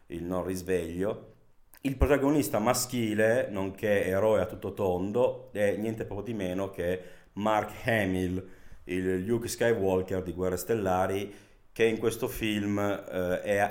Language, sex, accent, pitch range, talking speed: Italian, male, native, 85-100 Hz, 130 wpm